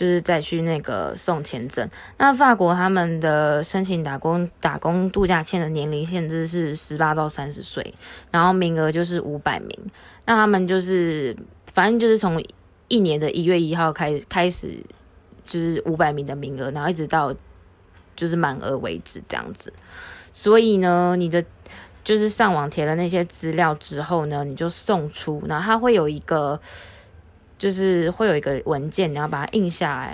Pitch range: 155-190 Hz